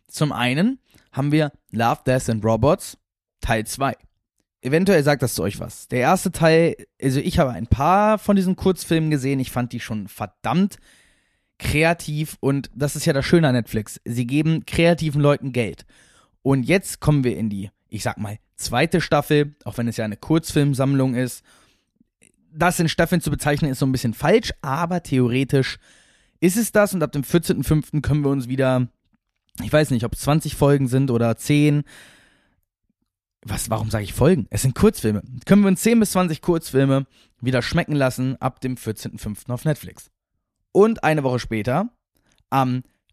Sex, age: male, 20-39